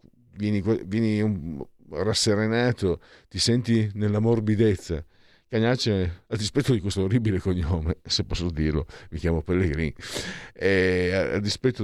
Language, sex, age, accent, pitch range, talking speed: Italian, male, 50-69, native, 80-100 Hz, 110 wpm